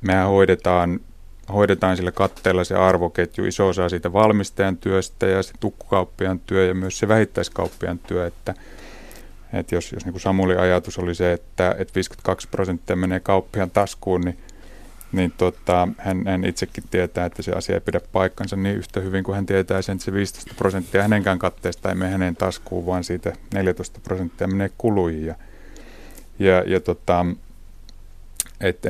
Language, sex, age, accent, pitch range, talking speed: Finnish, male, 30-49, native, 90-100 Hz, 155 wpm